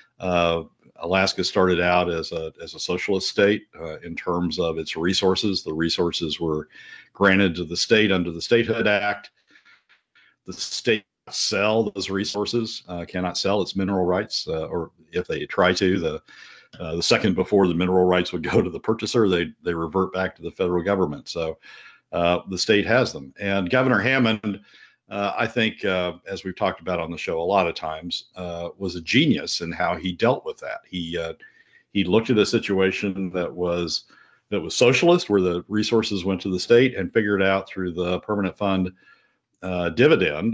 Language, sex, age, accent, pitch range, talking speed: English, male, 50-69, American, 90-105 Hz, 190 wpm